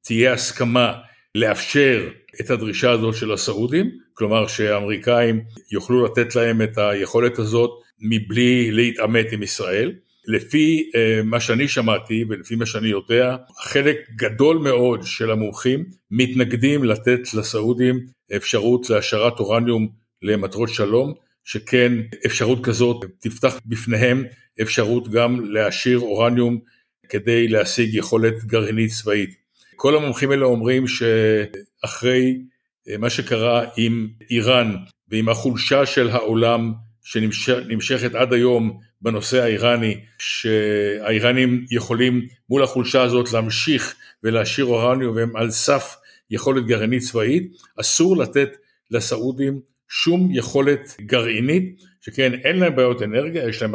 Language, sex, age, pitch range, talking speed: Hebrew, male, 60-79, 110-130 Hz, 110 wpm